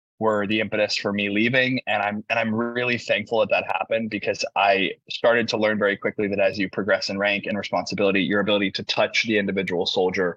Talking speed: 215 wpm